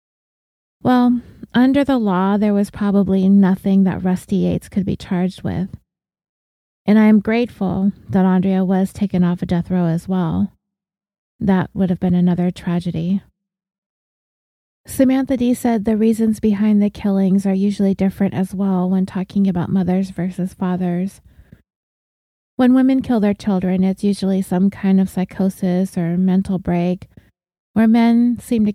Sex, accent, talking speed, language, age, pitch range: female, American, 150 wpm, English, 30-49, 180-210 Hz